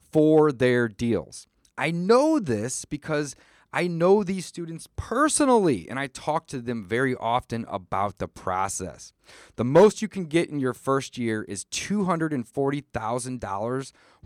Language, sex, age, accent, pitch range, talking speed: English, male, 30-49, American, 120-175 Hz, 140 wpm